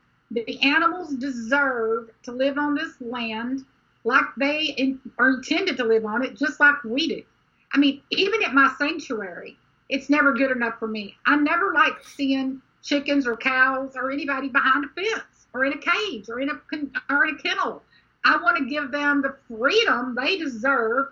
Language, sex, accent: English, female, American